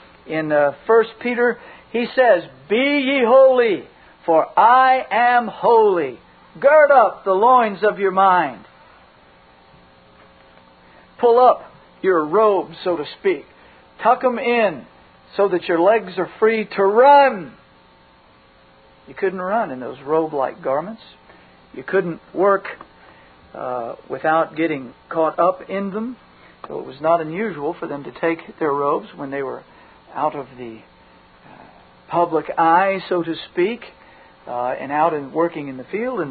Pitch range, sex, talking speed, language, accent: 130-200 Hz, male, 140 wpm, English, American